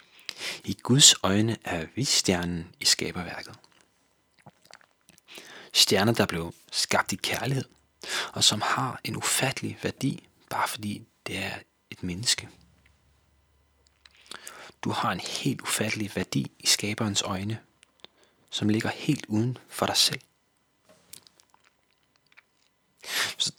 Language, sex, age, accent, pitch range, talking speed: Danish, male, 30-49, native, 95-125 Hz, 110 wpm